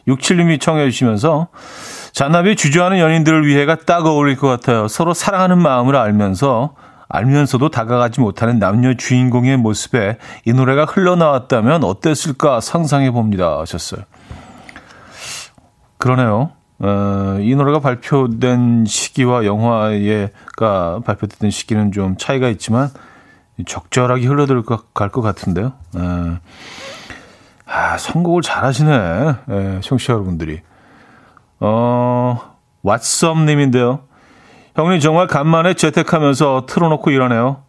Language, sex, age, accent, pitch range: Korean, male, 40-59, native, 105-155 Hz